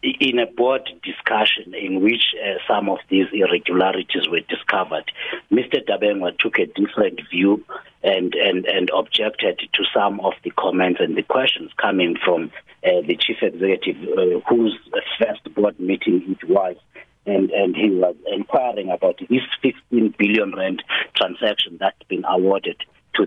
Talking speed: 150 wpm